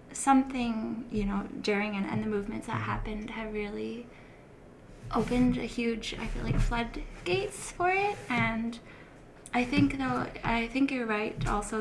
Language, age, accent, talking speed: English, 10-29, American, 155 wpm